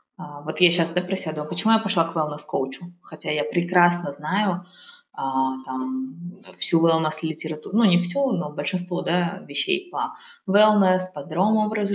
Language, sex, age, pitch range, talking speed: Russian, female, 20-39, 175-215 Hz, 150 wpm